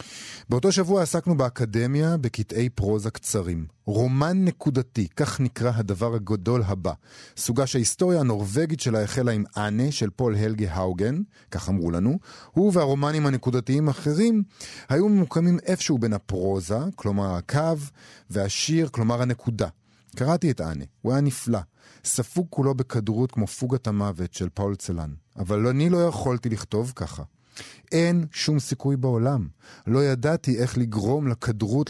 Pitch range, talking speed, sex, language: 100-140 Hz, 135 wpm, male, Hebrew